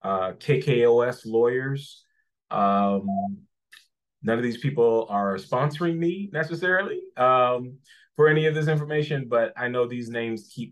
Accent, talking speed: American, 135 wpm